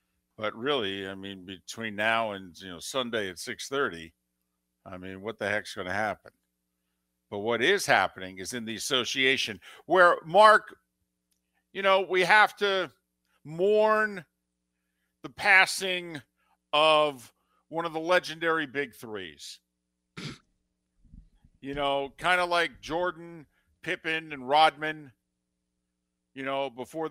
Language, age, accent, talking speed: English, 50-69, American, 125 wpm